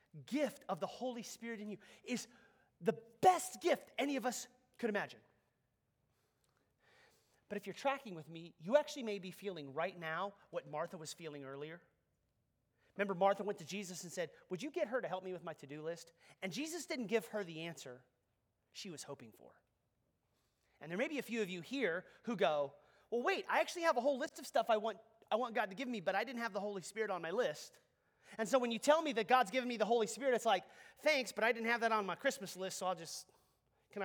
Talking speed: 230 wpm